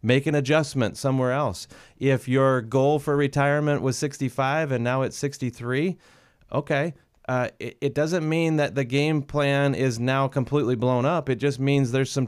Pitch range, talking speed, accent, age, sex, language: 120-145 Hz, 175 wpm, American, 30-49, male, English